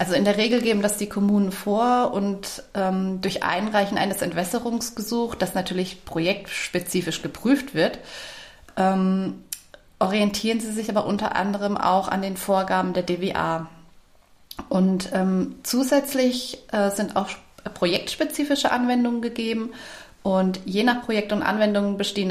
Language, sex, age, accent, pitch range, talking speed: German, female, 30-49, German, 185-230 Hz, 130 wpm